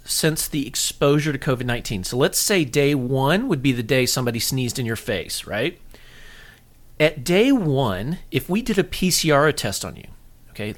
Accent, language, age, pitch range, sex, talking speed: American, English, 40-59, 115-155 Hz, male, 180 wpm